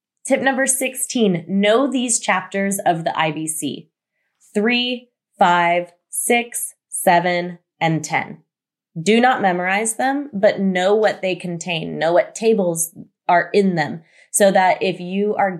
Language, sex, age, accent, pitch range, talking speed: English, female, 20-39, American, 165-200 Hz, 135 wpm